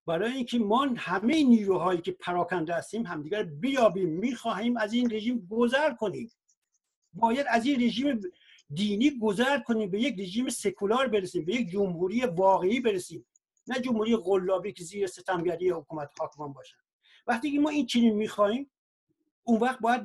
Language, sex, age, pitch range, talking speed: Persian, male, 50-69, 185-250 Hz, 155 wpm